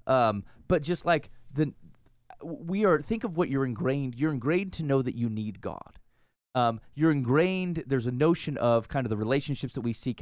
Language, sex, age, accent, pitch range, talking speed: English, male, 30-49, American, 115-160 Hz, 200 wpm